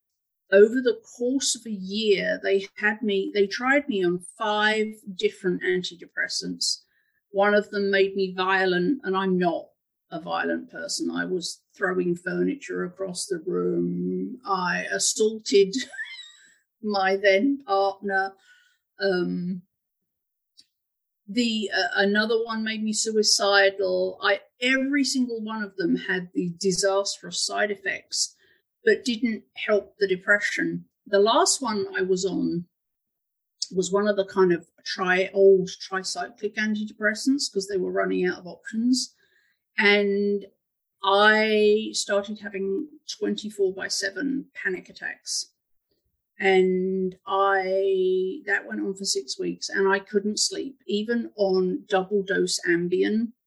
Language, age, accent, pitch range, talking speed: English, 50-69, British, 185-220 Hz, 125 wpm